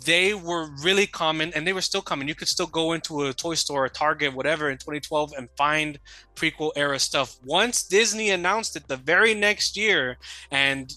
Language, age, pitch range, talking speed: English, 20-39, 135-170 Hz, 195 wpm